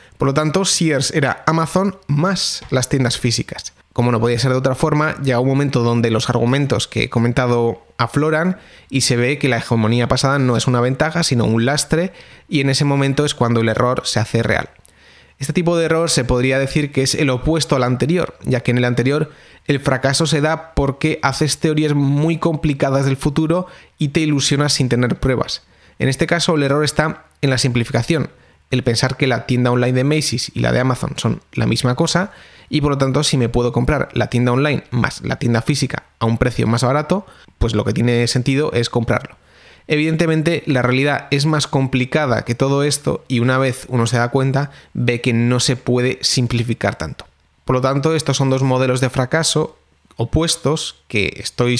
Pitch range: 120-150 Hz